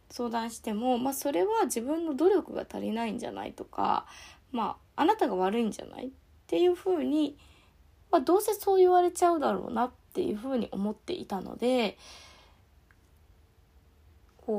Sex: female